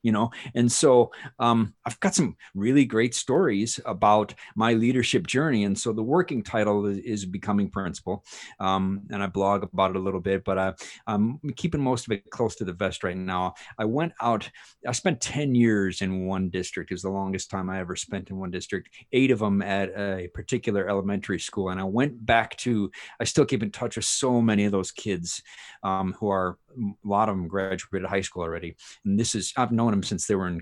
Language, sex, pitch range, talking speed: English, male, 95-125 Hz, 215 wpm